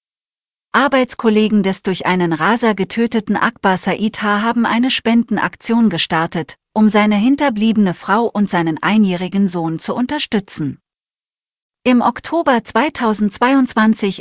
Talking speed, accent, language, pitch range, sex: 110 wpm, German, German, 180-225 Hz, female